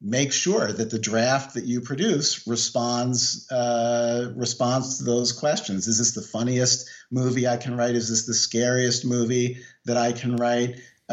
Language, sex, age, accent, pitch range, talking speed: English, male, 50-69, American, 115-130 Hz, 165 wpm